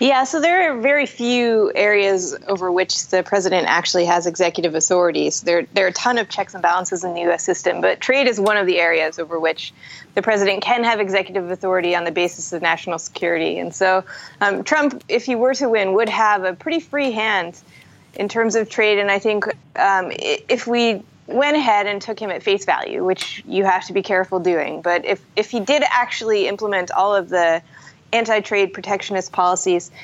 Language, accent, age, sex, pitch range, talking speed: English, American, 20-39, female, 175-220 Hz, 205 wpm